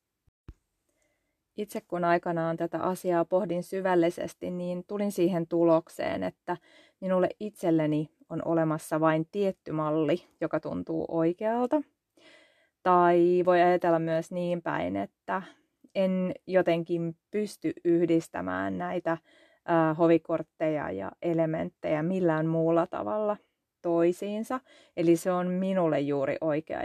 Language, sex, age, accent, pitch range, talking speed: Finnish, female, 30-49, native, 165-195 Hz, 105 wpm